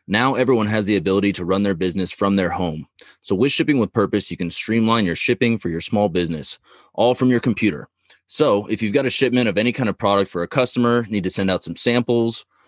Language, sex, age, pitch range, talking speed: English, male, 30-49, 90-115 Hz, 235 wpm